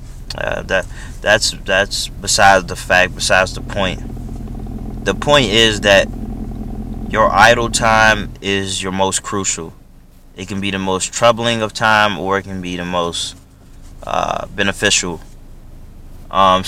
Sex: male